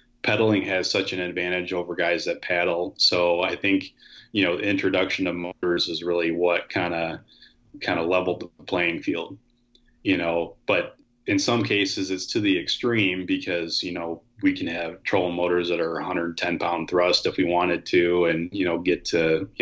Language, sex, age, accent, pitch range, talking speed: English, male, 30-49, American, 85-95 Hz, 190 wpm